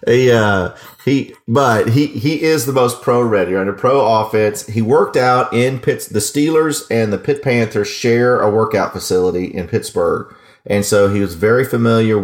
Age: 40-59